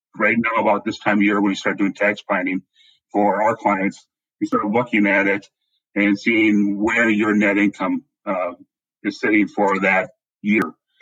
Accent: American